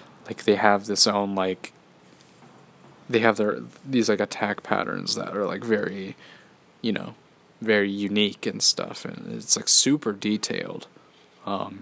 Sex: male